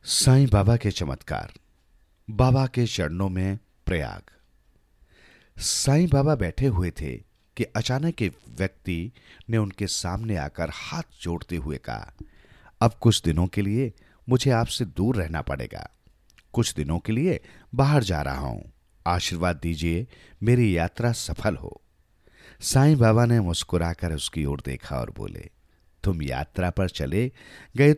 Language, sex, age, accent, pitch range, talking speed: Hindi, male, 50-69, native, 85-130 Hz, 135 wpm